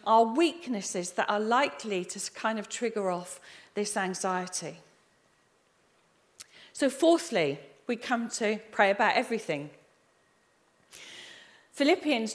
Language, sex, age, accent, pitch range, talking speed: English, female, 40-59, British, 190-255 Hz, 100 wpm